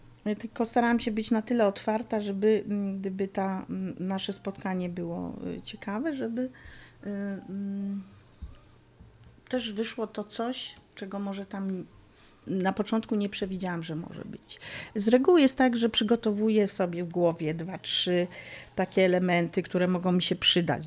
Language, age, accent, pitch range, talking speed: Polish, 40-59, native, 180-215 Hz, 135 wpm